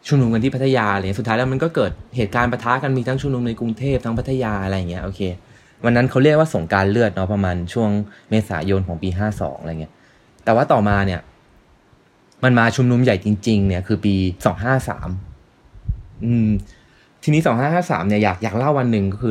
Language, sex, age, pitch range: Thai, male, 20-39, 95-125 Hz